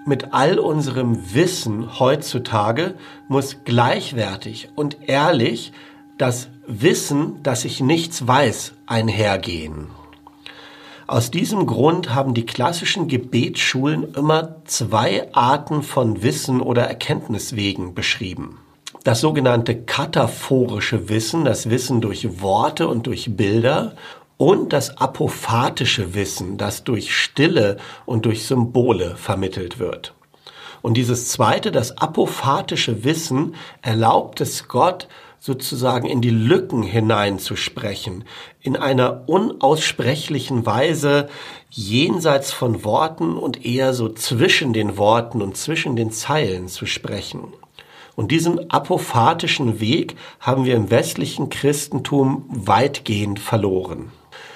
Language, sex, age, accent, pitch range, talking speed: German, male, 60-79, German, 115-145 Hz, 110 wpm